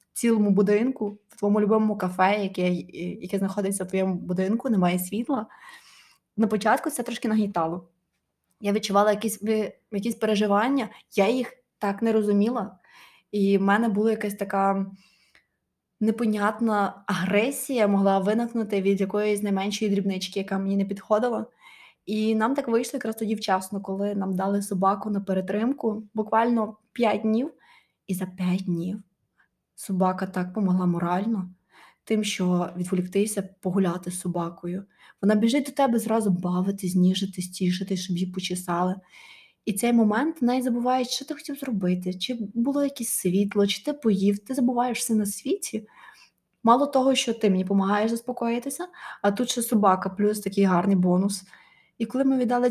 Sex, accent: female, native